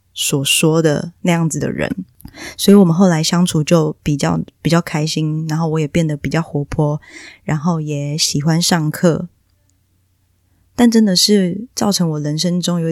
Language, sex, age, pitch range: Chinese, female, 20-39, 150-180 Hz